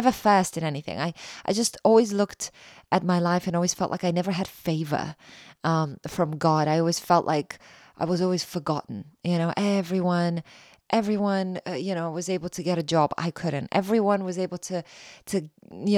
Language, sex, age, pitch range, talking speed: English, female, 20-39, 160-195 Hz, 195 wpm